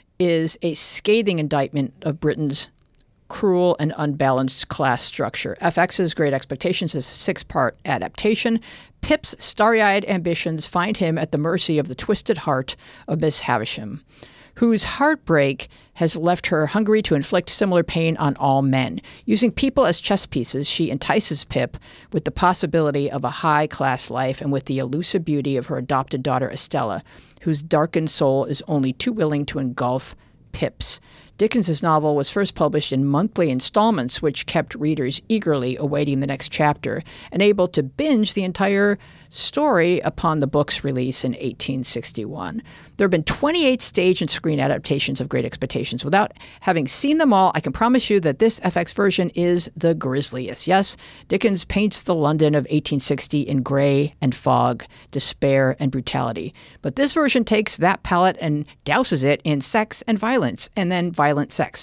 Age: 50-69